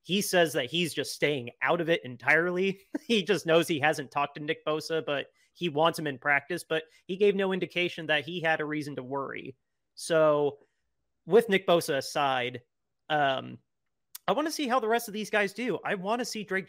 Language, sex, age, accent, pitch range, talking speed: English, male, 30-49, American, 145-175 Hz, 210 wpm